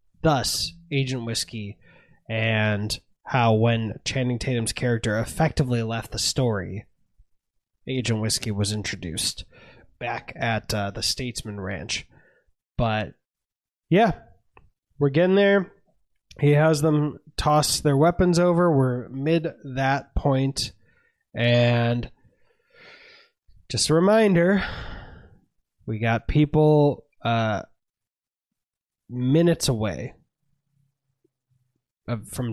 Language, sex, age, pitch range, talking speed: English, male, 20-39, 110-145 Hz, 95 wpm